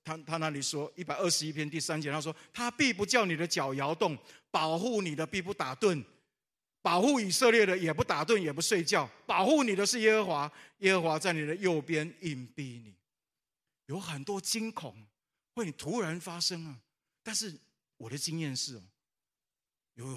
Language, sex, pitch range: Chinese, male, 130-180 Hz